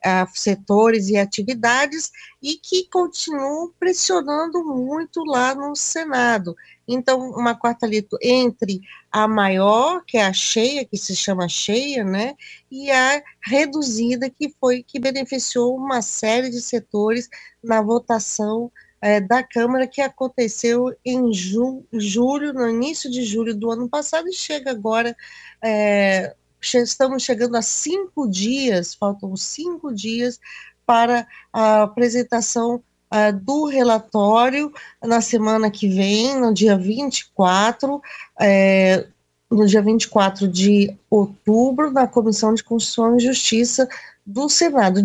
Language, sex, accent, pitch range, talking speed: Portuguese, female, Brazilian, 220-265 Hz, 120 wpm